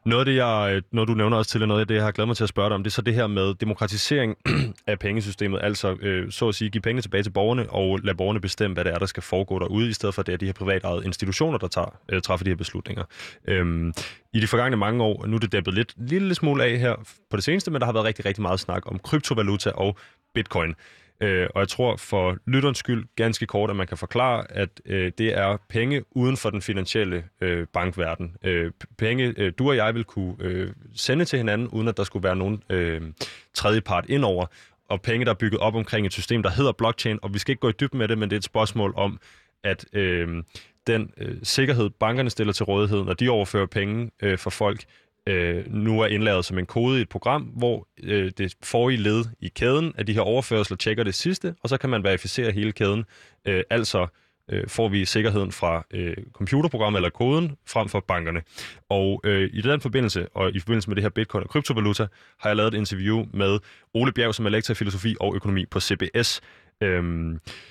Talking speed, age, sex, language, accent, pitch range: 225 wpm, 20-39, male, Danish, native, 95-115 Hz